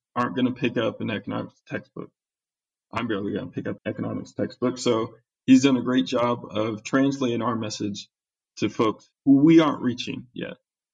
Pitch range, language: 110-140 Hz, English